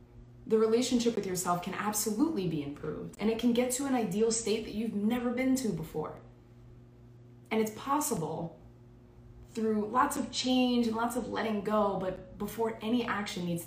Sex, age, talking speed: female, 20-39, 170 wpm